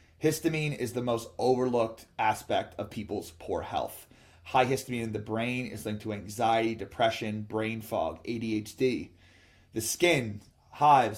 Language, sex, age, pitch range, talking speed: English, male, 30-49, 110-145 Hz, 140 wpm